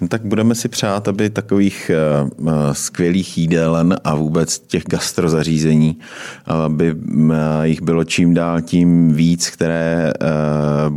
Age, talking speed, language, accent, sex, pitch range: 30-49, 130 wpm, Czech, native, male, 80-85 Hz